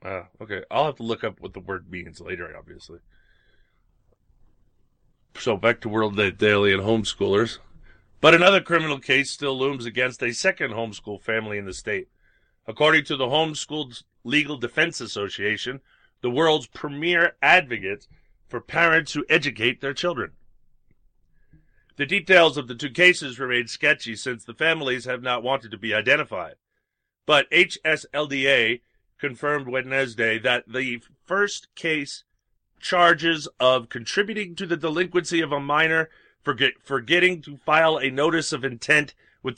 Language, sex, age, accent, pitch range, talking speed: English, male, 40-59, American, 120-155 Hz, 140 wpm